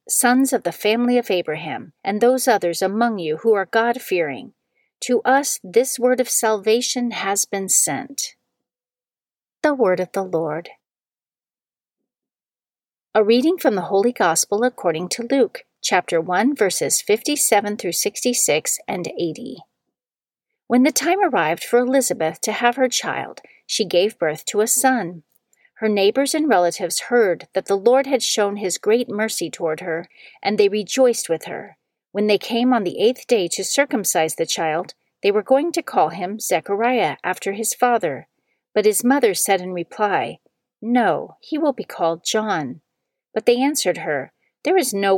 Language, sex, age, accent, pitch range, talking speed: English, female, 40-59, American, 185-250 Hz, 160 wpm